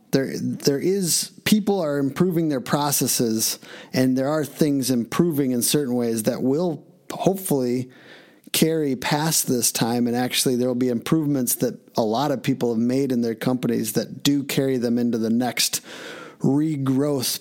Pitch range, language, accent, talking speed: 120-150 Hz, English, American, 160 wpm